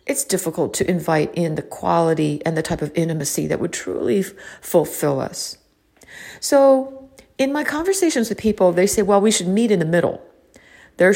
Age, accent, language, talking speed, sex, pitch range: 50-69, American, English, 175 wpm, female, 170-235 Hz